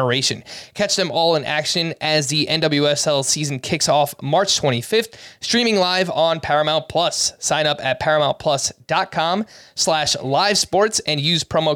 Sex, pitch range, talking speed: male, 150-195 Hz, 135 wpm